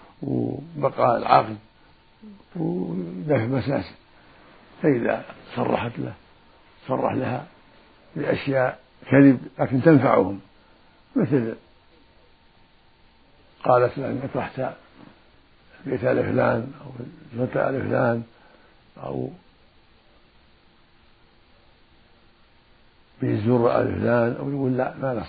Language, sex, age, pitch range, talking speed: Arabic, male, 60-79, 110-135 Hz, 75 wpm